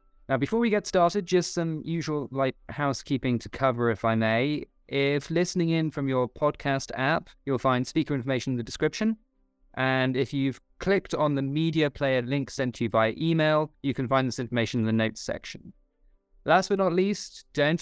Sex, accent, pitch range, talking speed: male, British, 120-155 Hz, 190 wpm